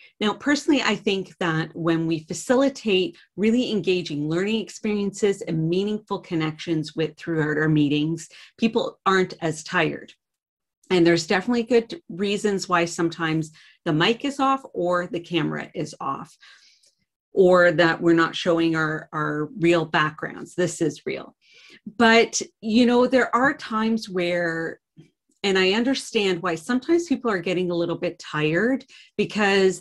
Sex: female